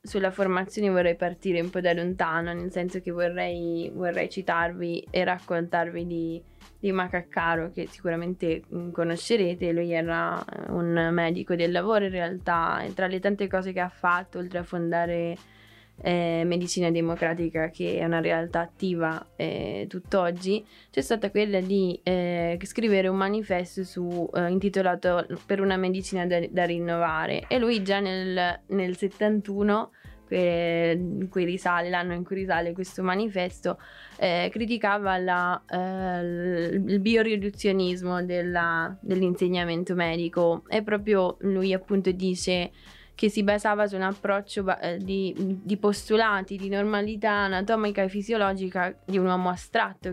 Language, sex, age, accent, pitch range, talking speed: Italian, female, 20-39, native, 175-200 Hz, 130 wpm